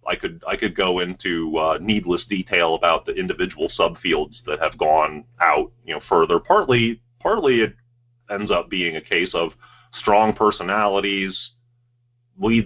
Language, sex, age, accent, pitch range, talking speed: English, male, 30-49, American, 105-120 Hz, 150 wpm